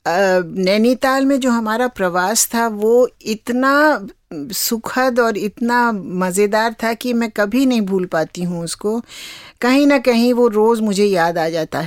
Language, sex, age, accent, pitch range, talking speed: Hindi, female, 50-69, native, 180-230 Hz, 155 wpm